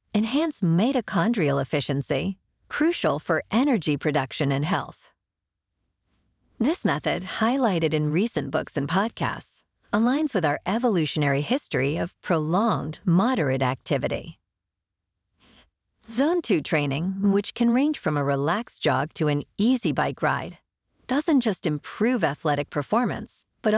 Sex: female